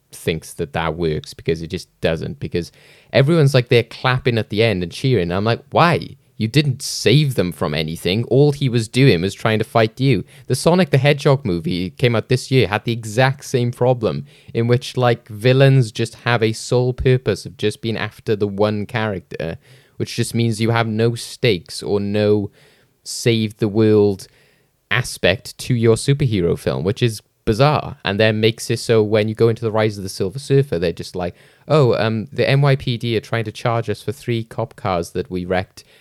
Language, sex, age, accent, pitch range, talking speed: English, male, 20-39, British, 100-125 Hz, 200 wpm